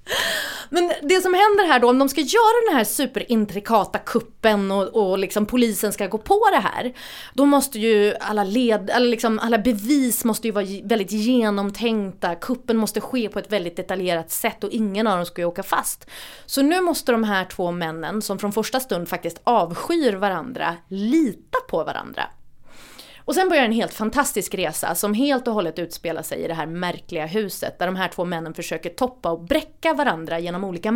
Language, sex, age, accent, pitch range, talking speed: Swedish, female, 30-49, native, 185-250 Hz, 185 wpm